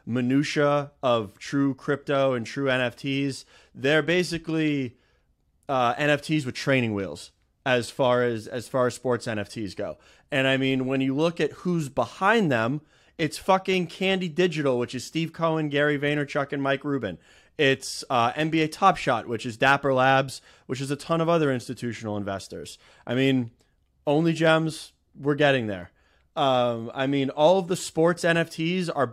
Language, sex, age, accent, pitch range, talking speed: English, male, 30-49, American, 120-150 Hz, 165 wpm